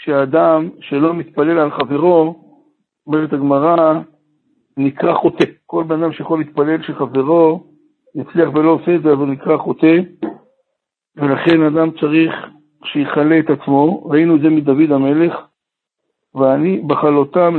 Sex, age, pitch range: male, 60-79, 145-165 Hz